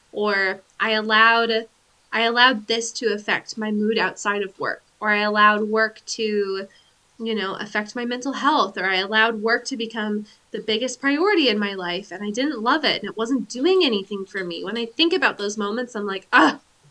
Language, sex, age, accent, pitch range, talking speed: English, female, 20-39, American, 215-275 Hz, 200 wpm